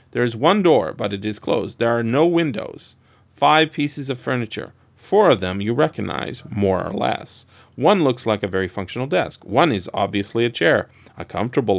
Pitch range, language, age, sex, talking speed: 105-130 Hz, English, 40-59, male, 195 wpm